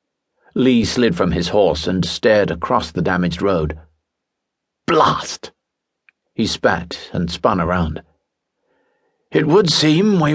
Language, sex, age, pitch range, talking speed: English, male, 60-79, 80-125 Hz, 120 wpm